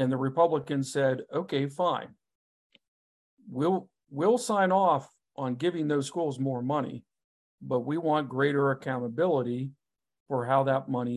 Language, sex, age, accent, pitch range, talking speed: English, male, 50-69, American, 125-150 Hz, 135 wpm